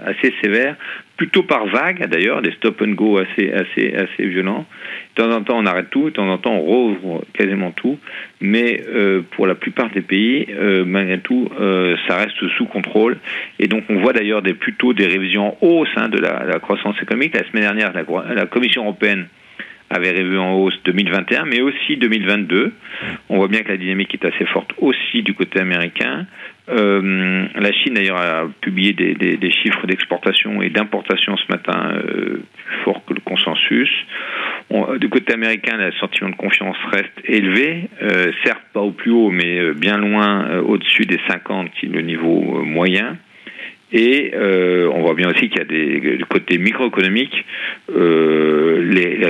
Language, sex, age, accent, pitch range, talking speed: French, male, 40-59, French, 95-110 Hz, 185 wpm